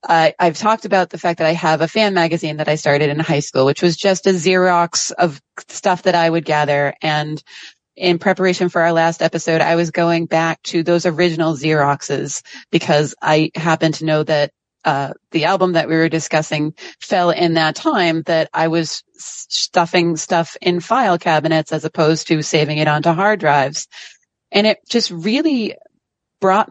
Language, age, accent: English, 30-49, American